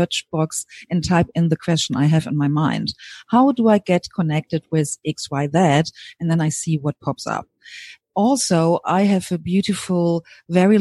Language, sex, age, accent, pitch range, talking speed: English, female, 40-59, German, 160-190 Hz, 165 wpm